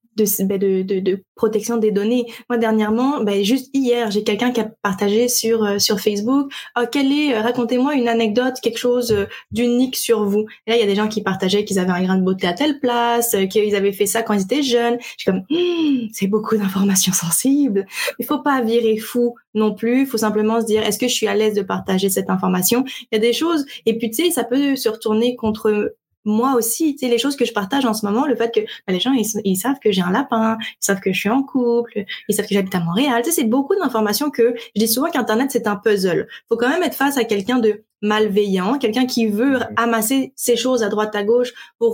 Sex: female